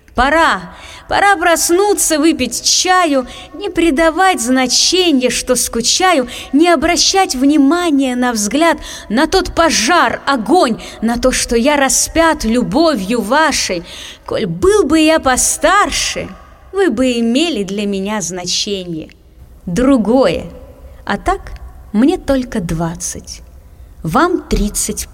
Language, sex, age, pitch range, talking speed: English, female, 20-39, 170-270 Hz, 105 wpm